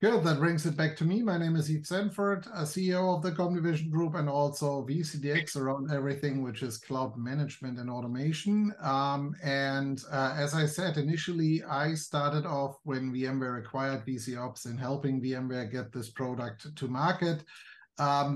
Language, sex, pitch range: English, male, 135-155 Hz